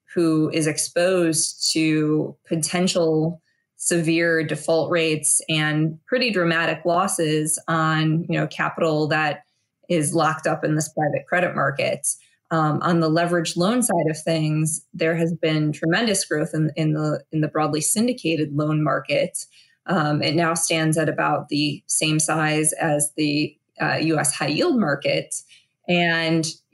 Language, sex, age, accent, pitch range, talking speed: English, female, 20-39, American, 155-175 Hz, 135 wpm